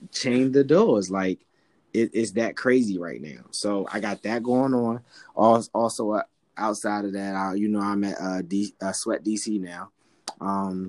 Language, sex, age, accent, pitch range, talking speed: English, male, 20-39, American, 95-110 Hz, 170 wpm